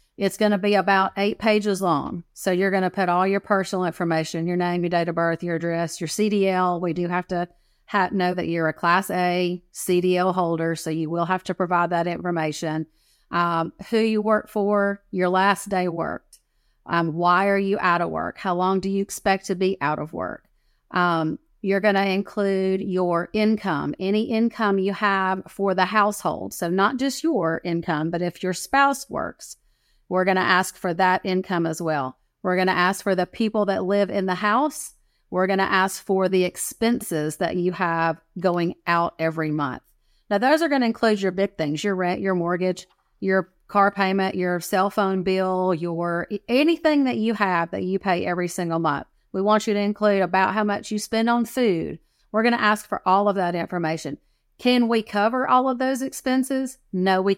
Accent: American